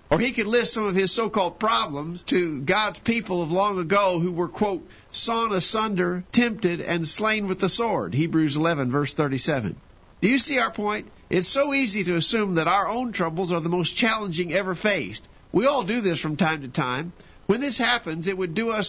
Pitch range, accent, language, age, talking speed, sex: 165-210 Hz, American, English, 50-69, 205 wpm, male